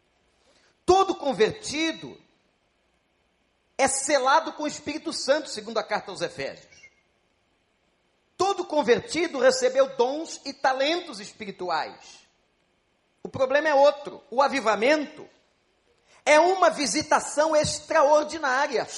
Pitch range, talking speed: 230-305 Hz, 95 wpm